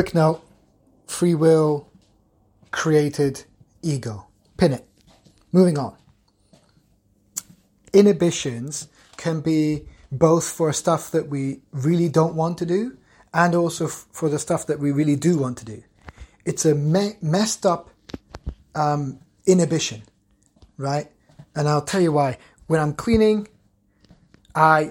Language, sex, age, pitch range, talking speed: English, male, 30-49, 135-170 Hz, 125 wpm